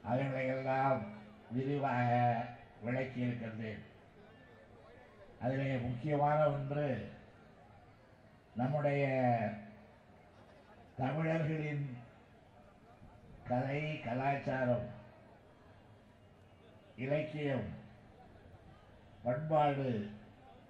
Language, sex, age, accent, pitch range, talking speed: Tamil, male, 60-79, native, 110-140 Hz, 40 wpm